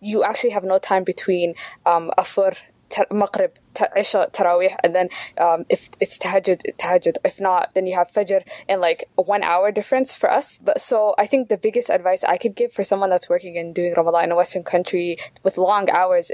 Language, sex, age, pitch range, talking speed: English, female, 10-29, 180-230 Hz, 200 wpm